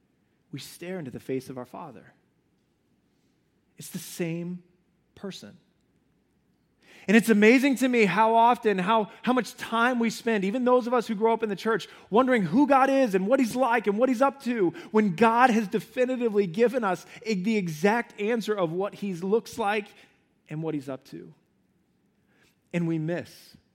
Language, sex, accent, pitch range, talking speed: English, male, American, 180-235 Hz, 175 wpm